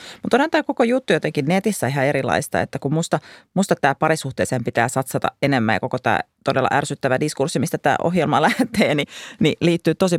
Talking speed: 185 wpm